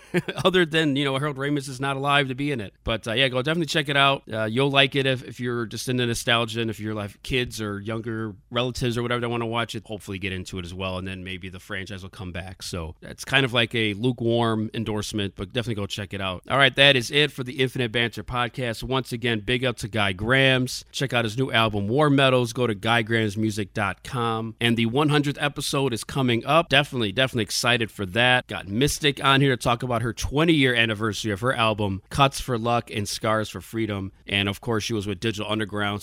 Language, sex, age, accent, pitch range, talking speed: English, male, 40-59, American, 105-135 Hz, 240 wpm